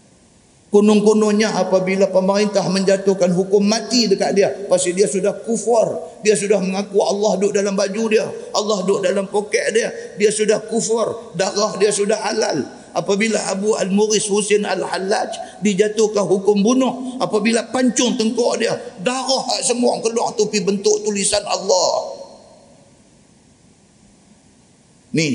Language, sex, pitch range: Malay, male, 180-220 Hz